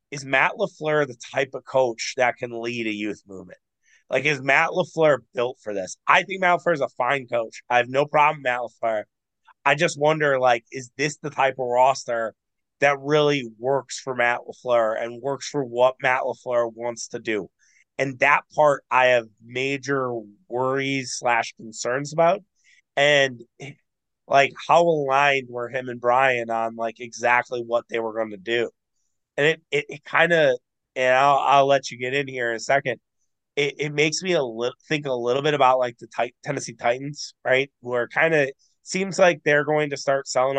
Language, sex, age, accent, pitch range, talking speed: English, male, 30-49, American, 120-140 Hz, 195 wpm